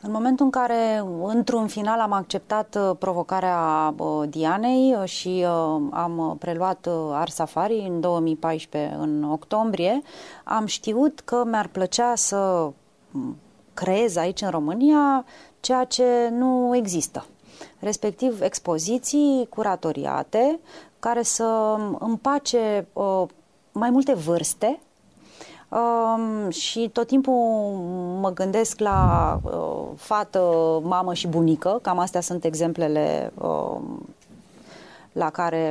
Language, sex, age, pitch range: Romanian, female, 30-49, 175-240 Hz